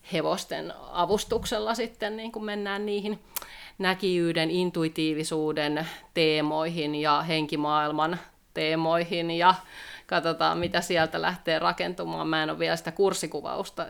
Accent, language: native, Finnish